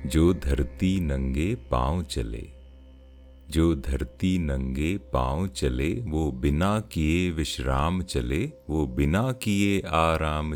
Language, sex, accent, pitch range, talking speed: Hindi, male, native, 65-90 Hz, 110 wpm